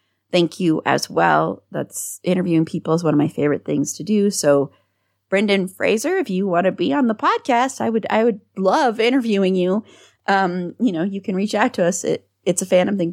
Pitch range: 155-205 Hz